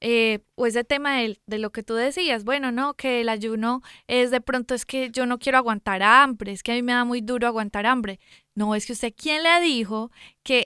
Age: 20-39